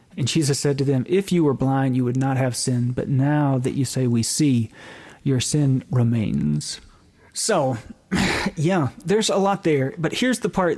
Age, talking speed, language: 40-59, 190 wpm, English